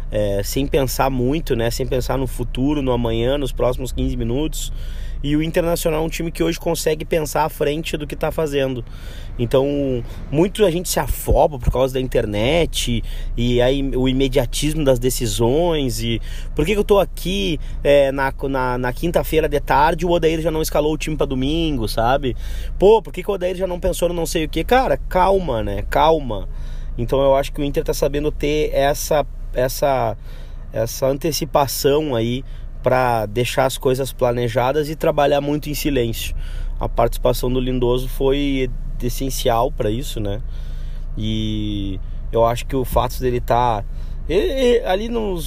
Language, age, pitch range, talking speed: Portuguese, 20-39, 115-155 Hz, 180 wpm